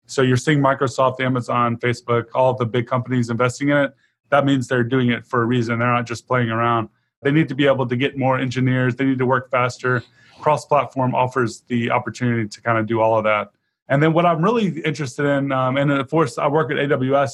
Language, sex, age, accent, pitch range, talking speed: English, male, 20-39, American, 125-140 Hz, 230 wpm